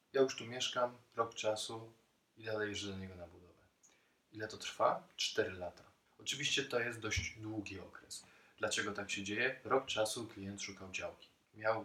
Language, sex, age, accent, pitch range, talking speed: Polish, male, 20-39, native, 95-115 Hz, 165 wpm